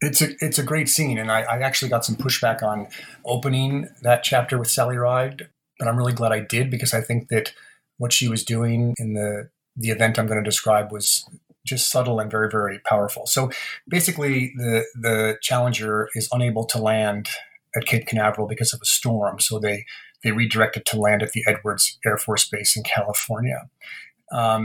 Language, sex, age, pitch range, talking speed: English, male, 30-49, 110-125 Hz, 190 wpm